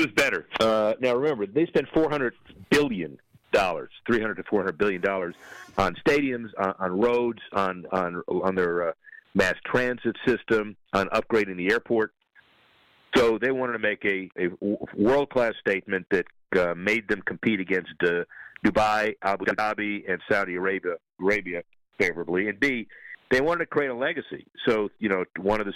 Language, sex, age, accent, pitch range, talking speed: English, male, 50-69, American, 90-110 Hz, 165 wpm